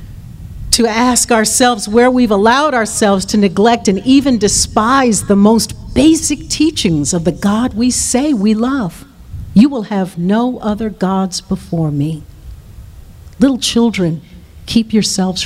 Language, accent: English, American